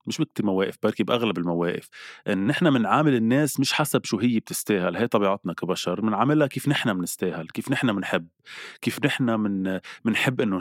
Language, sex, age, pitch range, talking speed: Arabic, male, 20-39, 95-130 Hz, 170 wpm